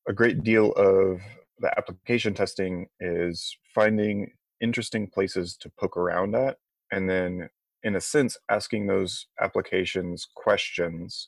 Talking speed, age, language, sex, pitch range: 130 wpm, 20-39, English, male, 90-115 Hz